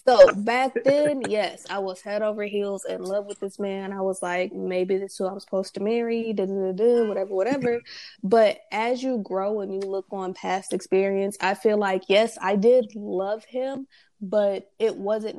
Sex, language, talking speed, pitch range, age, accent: female, English, 190 wpm, 185-210 Hz, 20-39, American